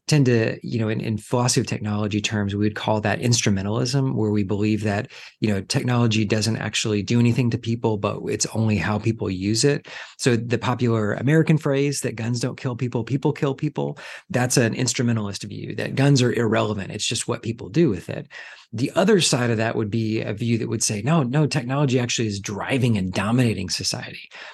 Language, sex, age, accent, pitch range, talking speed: English, male, 30-49, American, 110-135 Hz, 205 wpm